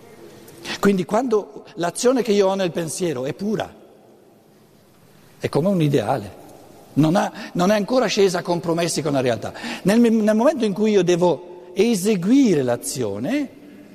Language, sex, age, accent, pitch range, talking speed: Italian, male, 60-79, native, 155-205 Hz, 145 wpm